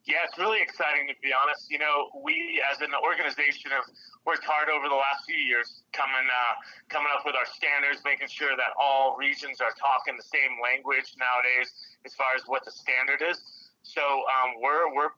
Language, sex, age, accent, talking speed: English, male, 30-49, American, 200 wpm